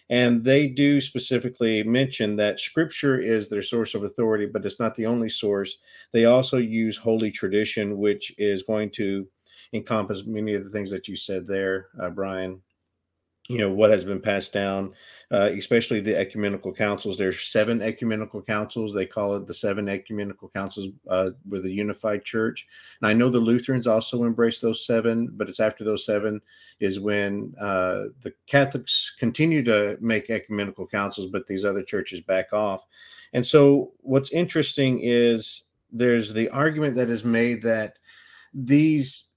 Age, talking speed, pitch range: 50-69, 165 wpm, 105-130 Hz